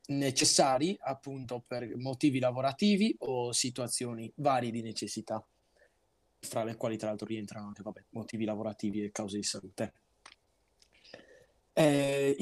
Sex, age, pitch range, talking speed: male, 20-39, 120-160 Hz, 120 wpm